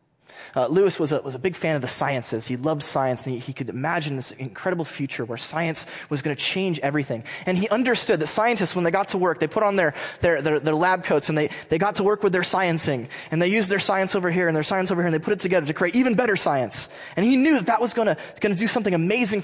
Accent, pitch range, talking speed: American, 160-235 Hz, 280 wpm